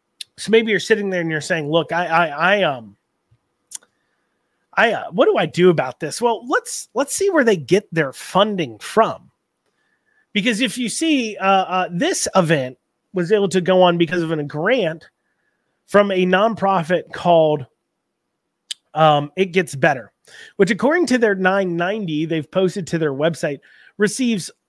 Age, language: 30-49, English